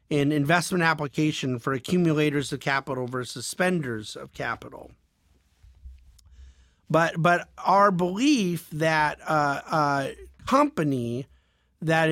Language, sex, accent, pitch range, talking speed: English, male, American, 135-175 Hz, 100 wpm